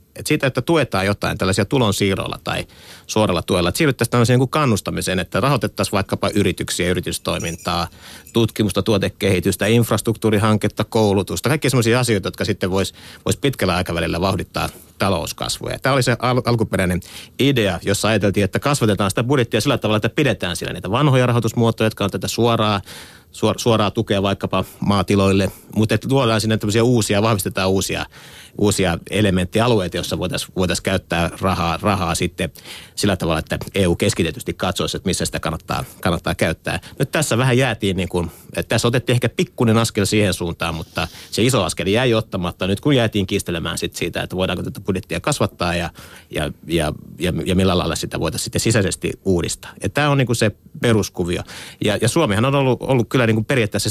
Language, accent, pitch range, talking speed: Finnish, native, 95-115 Hz, 165 wpm